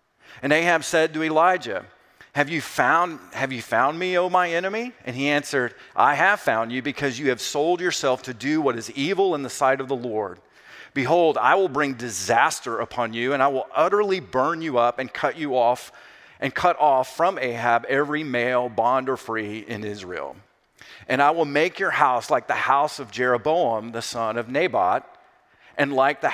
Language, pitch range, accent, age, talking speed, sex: English, 120-150 Hz, American, 40-59, 195 wpm, male